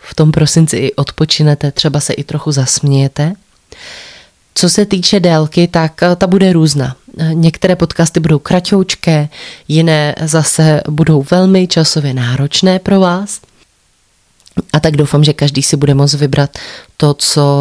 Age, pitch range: 20-39, 140-165 Hz